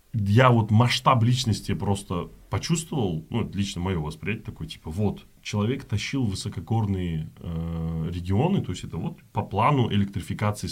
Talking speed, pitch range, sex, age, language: 140 wpm, 95-125 Hz, male, 20-39, Russian